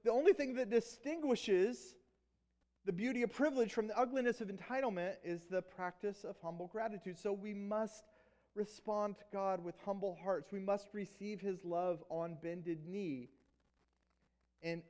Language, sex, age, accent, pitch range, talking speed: English, male, 30-49, American, 180-230 Hz, 155 wpm